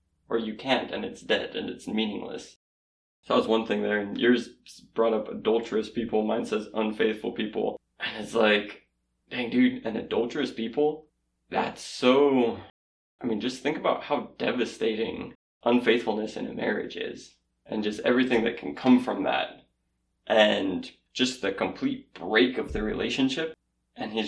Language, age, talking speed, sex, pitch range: English, 20-39, 160 wpm, male, 110-135 Hz